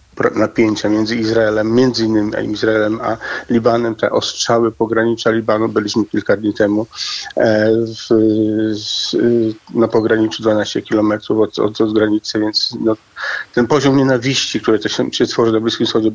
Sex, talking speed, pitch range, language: male, 140 wpm, 110-115 Hz, Polish